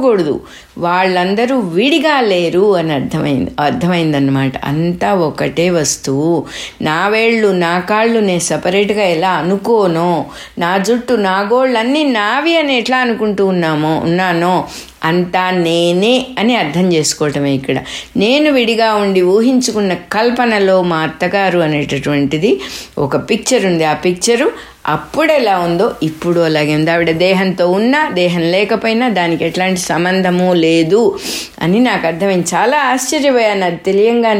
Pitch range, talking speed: 175-235 Hz, 105 wpm